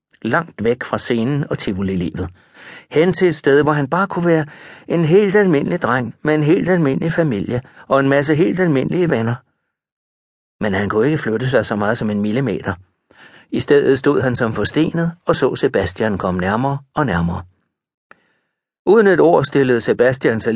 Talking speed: 180 wpm